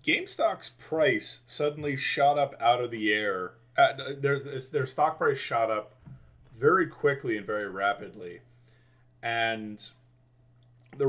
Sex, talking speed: male, 125 wpm